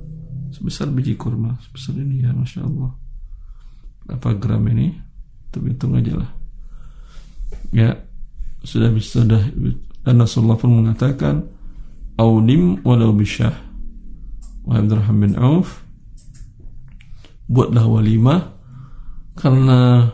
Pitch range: 110-130 Hz